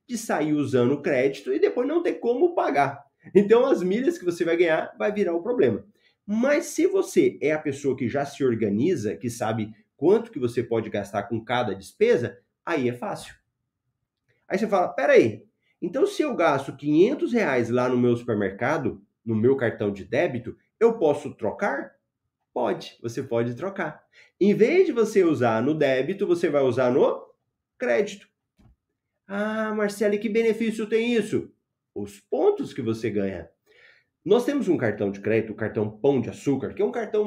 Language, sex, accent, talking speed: Portuguese, male, Brazilian, 180 wpm